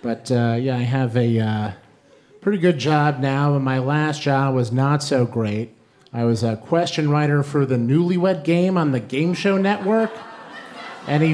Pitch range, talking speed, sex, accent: 135-195 Hz, 180 wpm, male, American